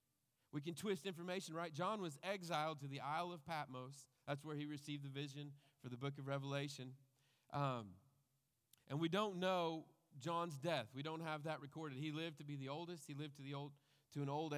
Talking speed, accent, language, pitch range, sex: 205 wpm, American, English, 135-165 Hz, male